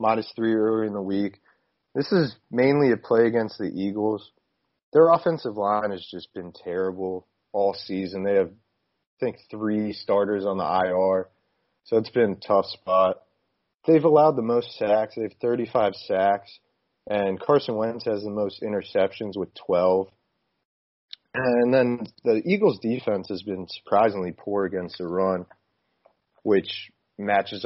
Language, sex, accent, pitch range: English, male, American, 95-110 Hz